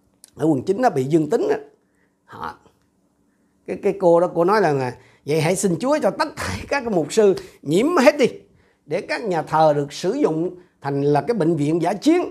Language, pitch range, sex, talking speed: Vietnamese, 130-220 Hz, male, 210 wpm